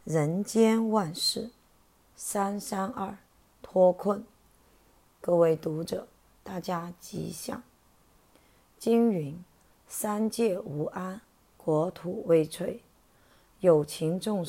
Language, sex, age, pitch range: Chinese, female, 30-49, 170-215 Hz